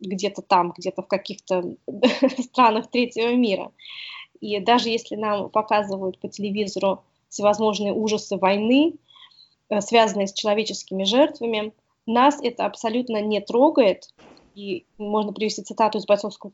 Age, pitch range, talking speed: 20-39, 200-235 Hz, 125 wpm